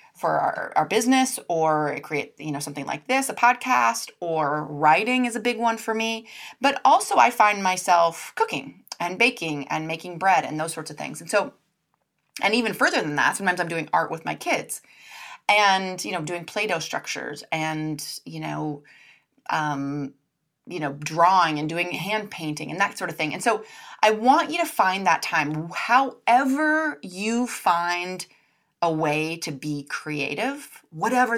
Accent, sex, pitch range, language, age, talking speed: American, female, 155-225 Hz, English, 30-49, 175 wpm